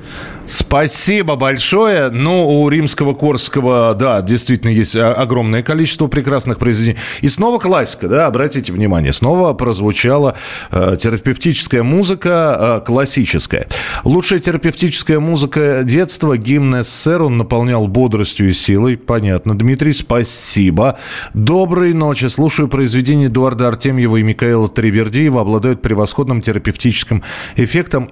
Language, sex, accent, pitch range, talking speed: Russian, male, native, 115-155 Hz, 110 wpm